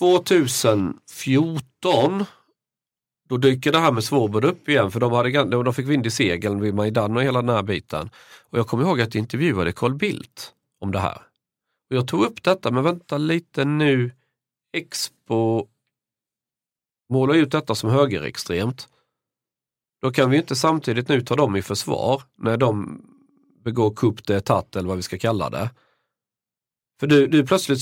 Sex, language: male, Swedish